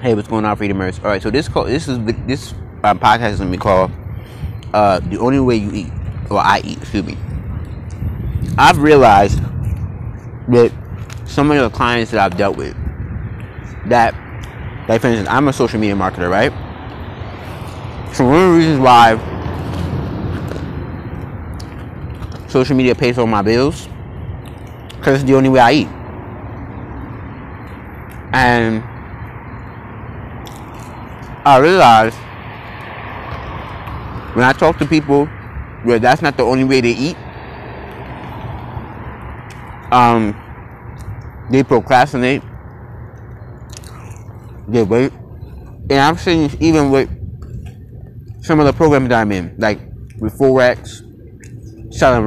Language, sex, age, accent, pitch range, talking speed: English, male, 20-39, American, 105-125 Hz, 120 wpm